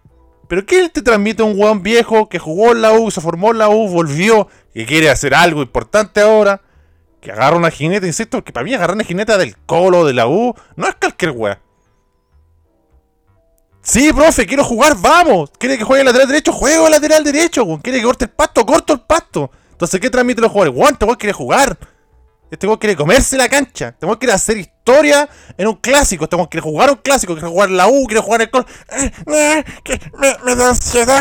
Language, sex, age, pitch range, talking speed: Spanish, male, 30-49, 170-280 Hz, 210 wpm